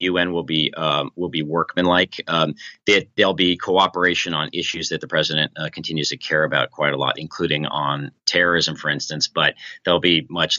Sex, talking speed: male, 195 wpm